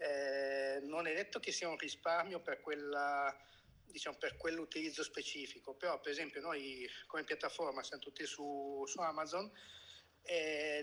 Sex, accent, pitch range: male, native, 135-170 Hz